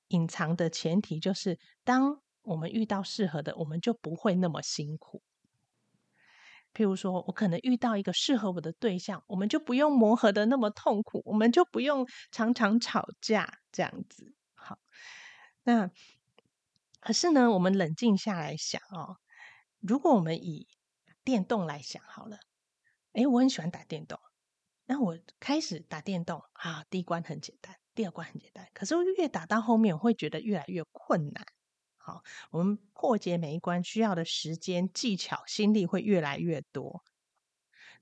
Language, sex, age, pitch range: Chinese, female, 30-49, 170-245 Hz